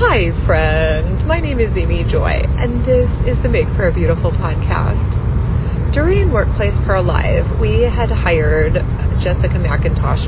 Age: 30-49